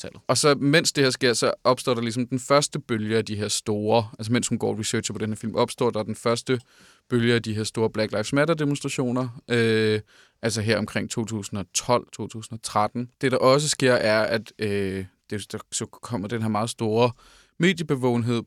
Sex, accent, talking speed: male, native, 190 wpm